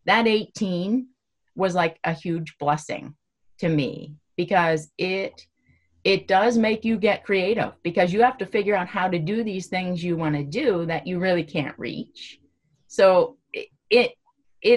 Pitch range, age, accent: 150-195 Hz, 30-49, American